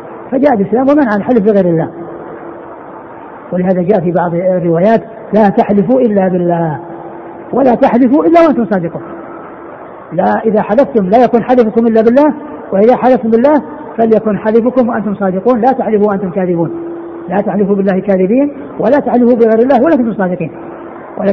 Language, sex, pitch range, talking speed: Arabic, female, 185-240 Hz, 145 wpm